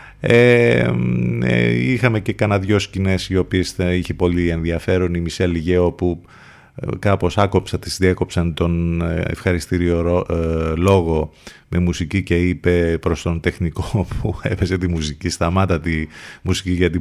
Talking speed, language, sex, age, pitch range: 130 wpm, Greek, male, 30-49, 85-110 Hz